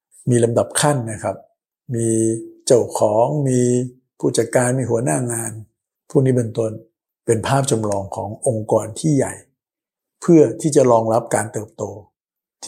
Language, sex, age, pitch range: Thai, male, 60-79, 110-130 Hz